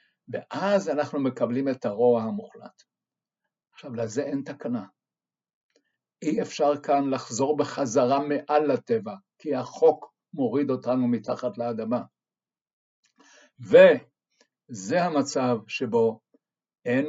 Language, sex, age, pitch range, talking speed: Hebrew, male, 60-79, 130-200 Hz, 95 wpm